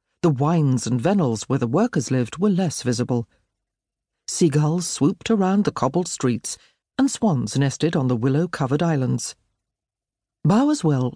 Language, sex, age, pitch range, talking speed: English, female, 50-69, 125-190 Hz, 135 wpm